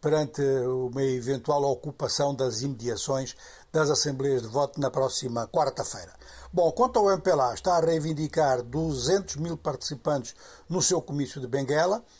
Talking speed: 140 wpm